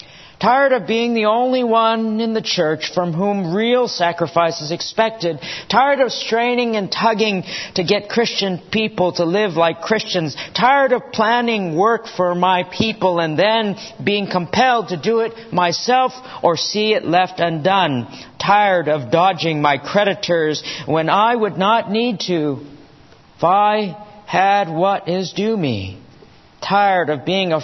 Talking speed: 150 wpm